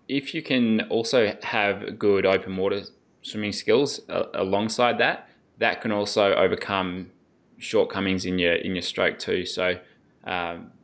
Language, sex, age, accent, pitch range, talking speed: English, male, 20-39, Australian, 95-120 Hz, 145 wpm